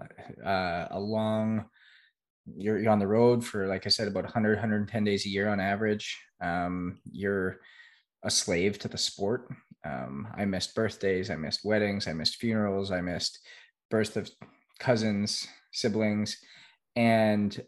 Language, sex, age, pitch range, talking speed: English, male, 20-39, 100-115 Hz, 150 wpm